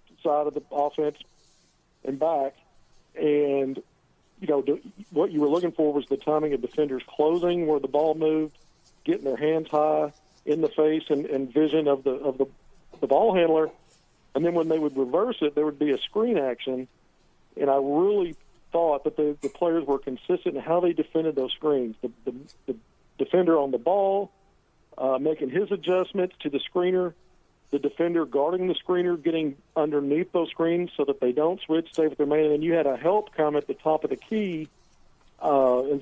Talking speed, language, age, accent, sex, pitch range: 195 wpm, English, 50-69, American, male, 140-175 Hz